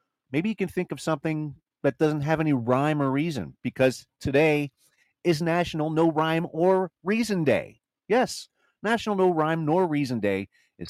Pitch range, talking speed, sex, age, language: 115-175 Hz, 165 wpm, male, 40-59, English